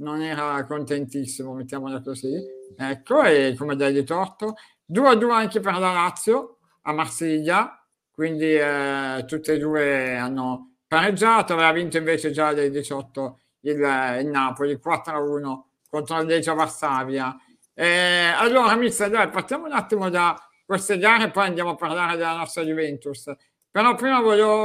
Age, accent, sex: 60-79, native, male